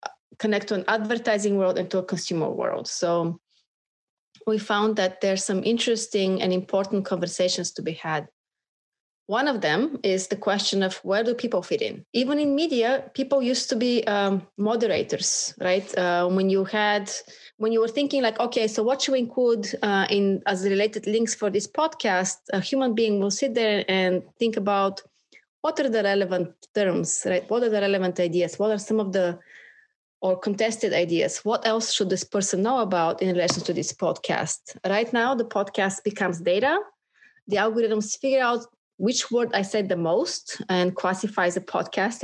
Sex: female